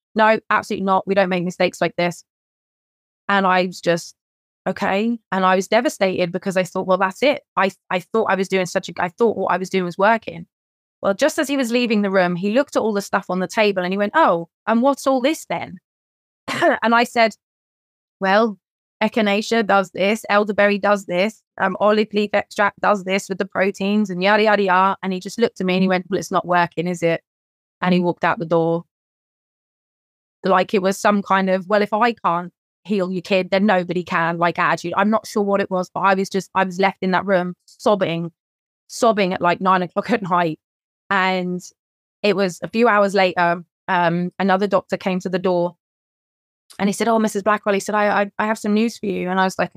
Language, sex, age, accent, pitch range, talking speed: English, female, 20-39, British, 180-210 Hz, 225 wpm